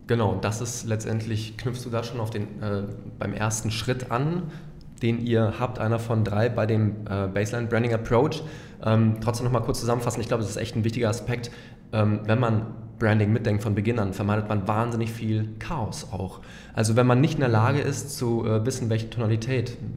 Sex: male